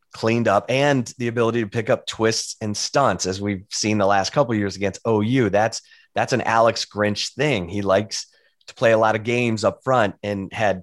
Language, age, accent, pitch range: English, 30-49, American, 100-130 Hz